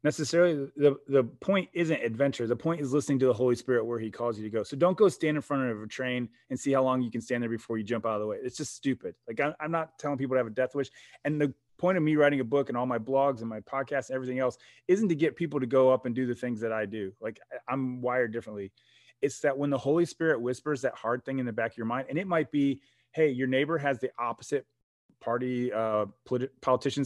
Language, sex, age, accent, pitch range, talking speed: English, male, 30-49, American, 120-145 Hz, 270 wpm